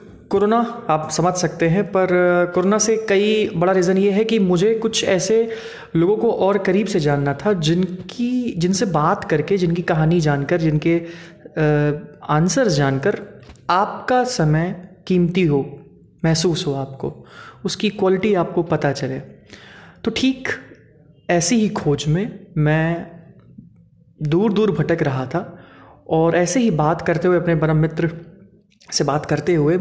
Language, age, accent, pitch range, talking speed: Hindi, 30-49, native, 155-195 Hz, 145 wpm